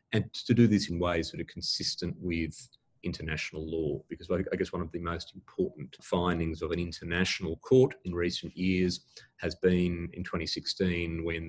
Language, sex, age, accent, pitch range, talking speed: English, male, 30-49, Australian, 85-100 Hz, 170 wpm